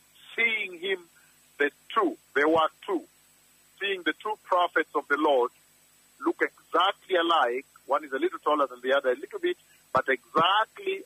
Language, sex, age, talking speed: English, male, 50-69, 165 wpm